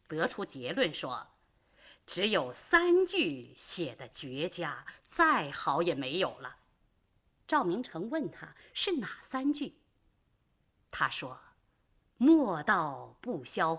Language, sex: Chinese, female